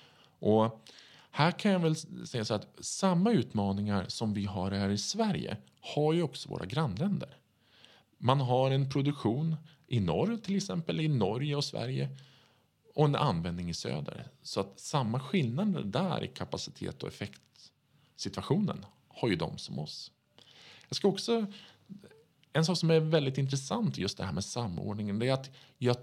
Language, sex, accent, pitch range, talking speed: Swedish, male, Norwegian, 100-160 Hz, 160 wpm